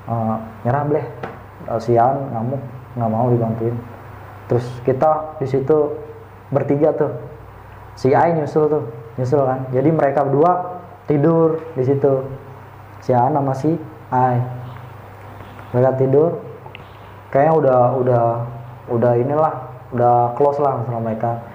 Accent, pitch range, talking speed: native, 110-135 Hz, 125 wpm